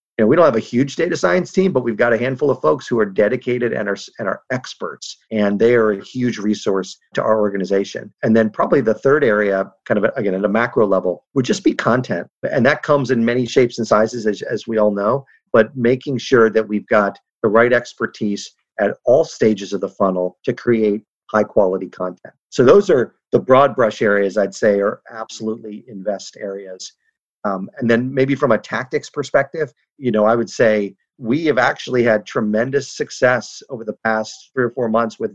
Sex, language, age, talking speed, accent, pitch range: male, English, 50-69, 205 wpm, American, 105-125 Hz